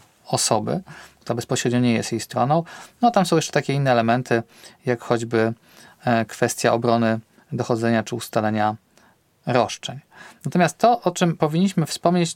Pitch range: 125-150 Hz